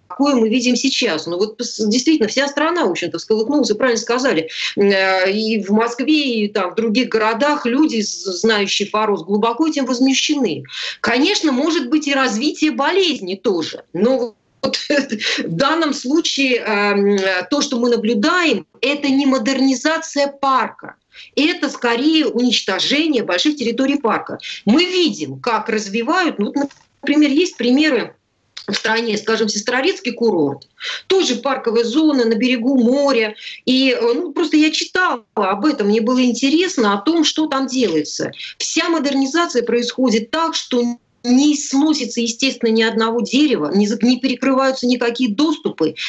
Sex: female